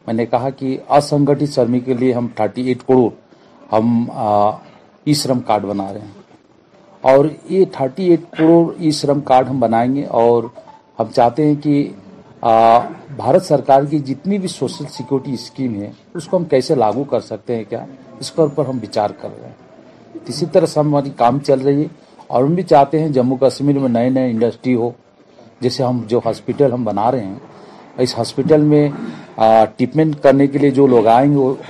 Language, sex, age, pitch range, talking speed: Urdu, male, 40-59, 125-160 Hz, 180 wpm